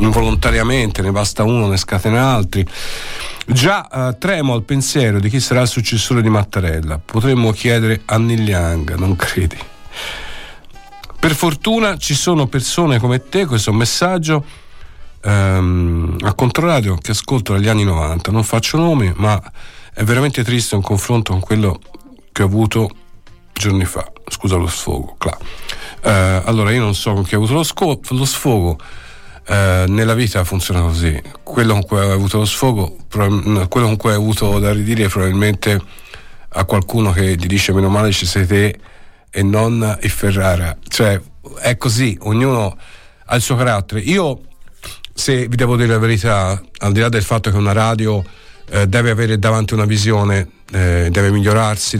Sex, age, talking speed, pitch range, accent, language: male, 50-69, 165 wpm, 95-120 Hz, native, Italian